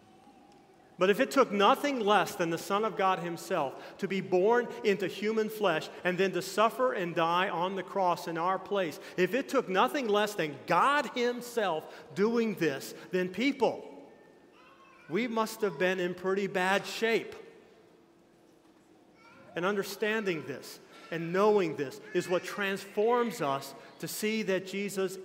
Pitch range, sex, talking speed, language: 160-200 Hz, male, 150 wpm, English